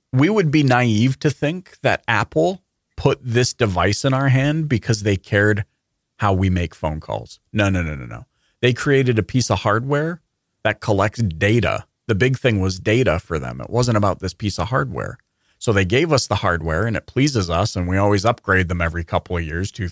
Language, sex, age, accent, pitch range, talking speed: English, male, 30-49, American, 95-120 Hz, 210 wpm